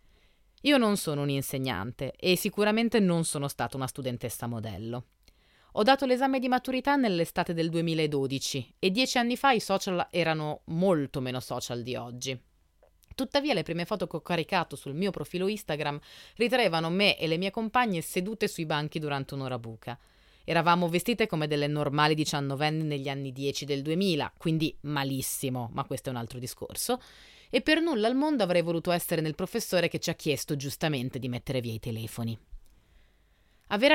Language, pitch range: Italian, 135-210 Hz